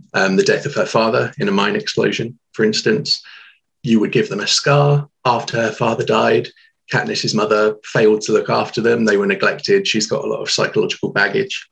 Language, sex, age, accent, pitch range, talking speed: English, male, 30-49, British, 110-145 Hz, 200 wpm